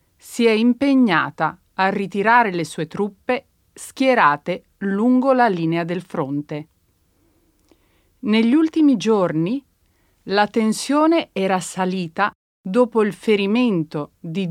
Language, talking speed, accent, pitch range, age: Italian, 105 wpm, native, 175-240 Hz, 30-49